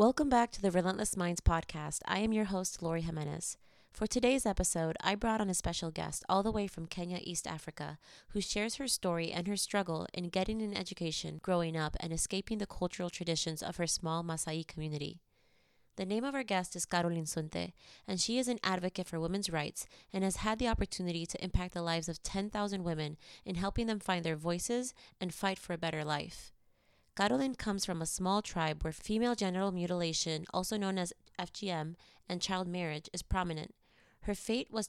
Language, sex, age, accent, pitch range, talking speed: English, female, 20-39, American, 165-200 Hz, 195 wpm